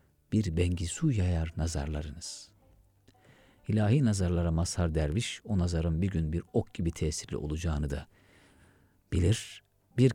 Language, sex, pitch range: Turkish, male, 85-110 Hz